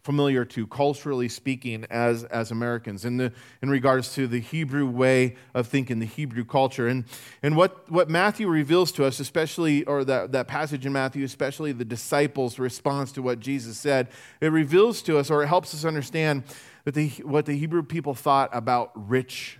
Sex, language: male, English